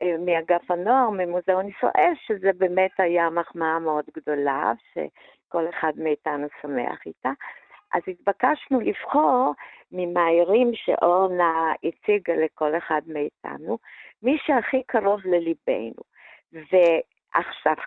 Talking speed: 95 wpm